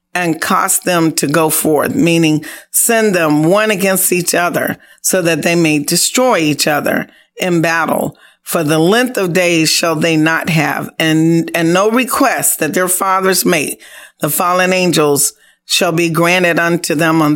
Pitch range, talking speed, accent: 155-185 Hz, 165 wpm, American